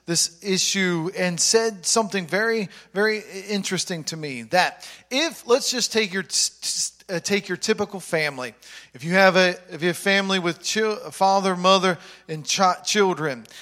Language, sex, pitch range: English, male, 170-205 Hz